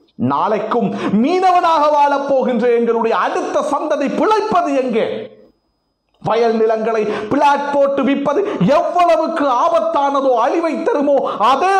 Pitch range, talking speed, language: 235-315 Hz, 90 wpm, Tamil